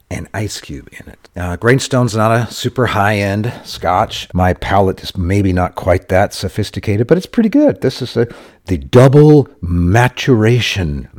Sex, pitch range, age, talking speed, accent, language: male, 80-110 Hz, 50-69, 160 wpm, American, English